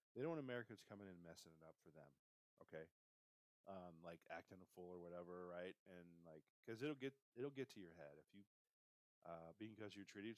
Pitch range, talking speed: 85-105 Hz, 220 wpm